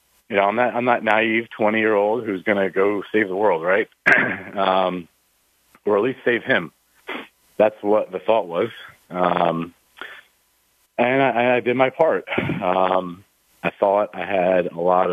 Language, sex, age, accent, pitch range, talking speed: English, male, 40-59, American, 90-110 Hz, 170 wpm